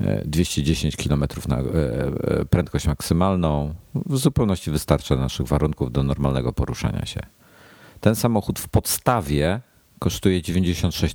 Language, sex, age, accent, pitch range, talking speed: Polish, male, 50-69, native, 75-95 Hz, 110 wpm